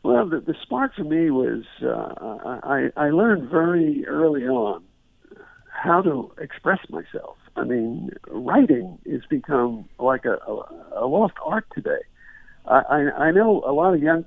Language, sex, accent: English, male, American